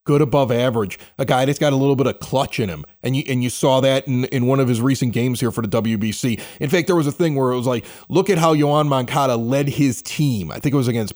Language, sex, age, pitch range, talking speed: English, male, 30-49, 115-145 Hz, 290 wpm